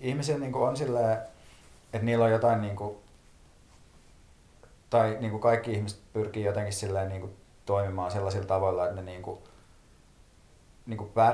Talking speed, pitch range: 95 wpm, 95-110 Hz